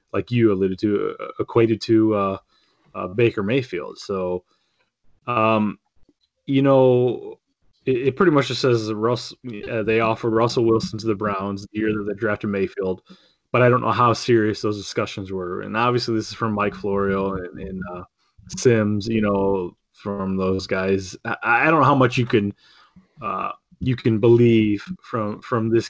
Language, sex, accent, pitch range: English, male, American, 100-120 Hz